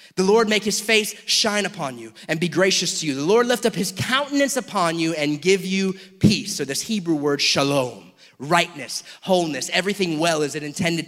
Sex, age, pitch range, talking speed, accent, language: male, 30-49, 165-220 Hz, 200 wpm, American, English